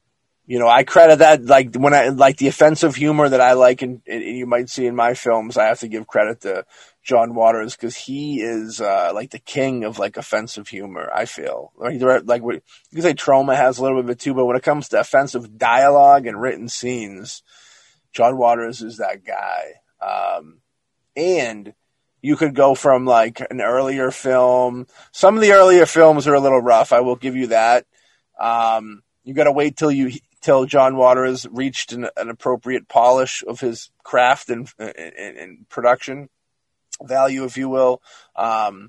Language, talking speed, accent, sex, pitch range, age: English, 185 wpm, American, male, 120-140 Hz, 20-39